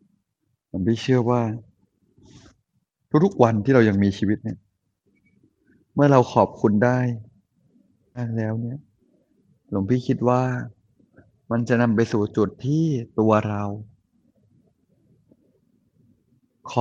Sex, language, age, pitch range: male, Thai, 20-39, 105-125 Hz